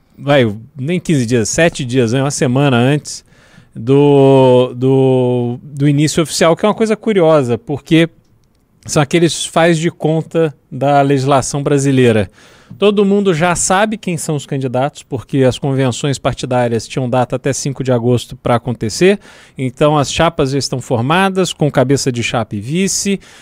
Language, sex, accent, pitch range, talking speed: Portuguese, male, Brazilian, 135-175 Hz, 150 wpm